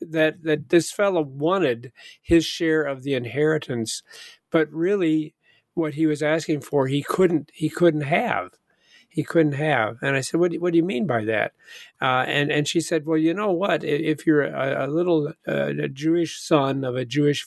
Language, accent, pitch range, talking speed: English, American, 135-160 Hz, 200 wpm